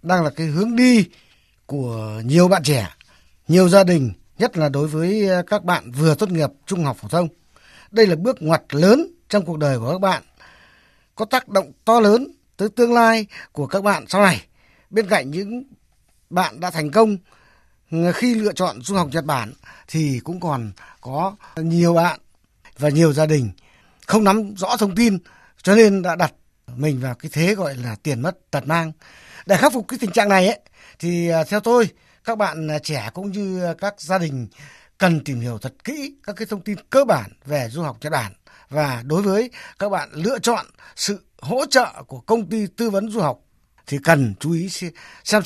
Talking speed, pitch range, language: 195 wpm, 150-220 Hz, Vietnamese